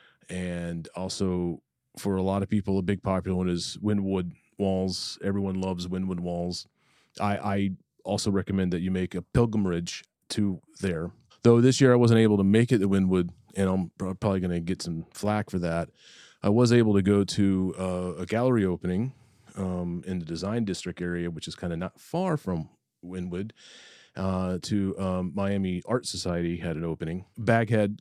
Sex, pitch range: male, 90-105 Hz